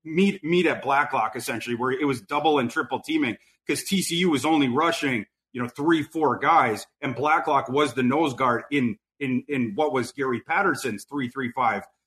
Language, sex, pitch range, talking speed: English, male, 135-165 Hz, 190 wpm